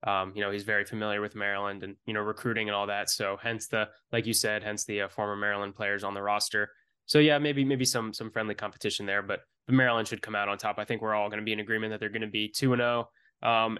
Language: English